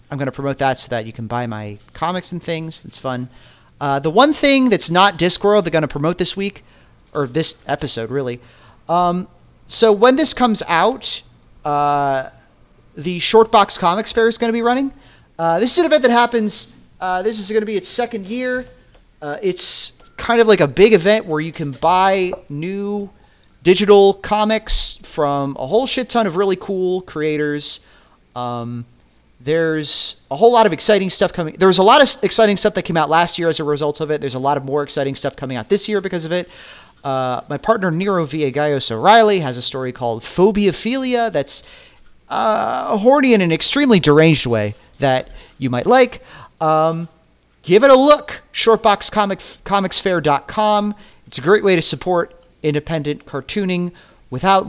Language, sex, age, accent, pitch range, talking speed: English, male, 30-49, American, 140-210 Hz, 185 wpm